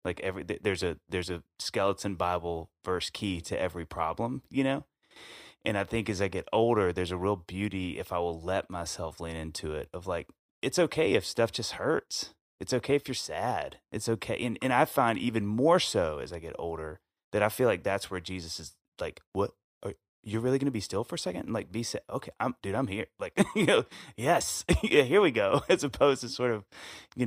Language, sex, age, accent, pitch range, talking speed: English, male, 30-49, American, 85-115 Hz, 220 wpm